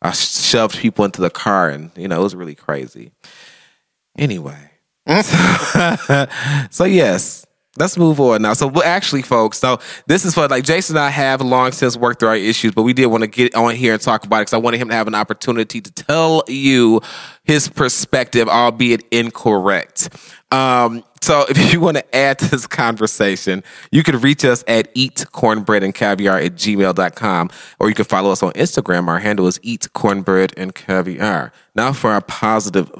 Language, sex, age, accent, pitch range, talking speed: English, male, 20-39, American, 100-130 Hz, 190 wpm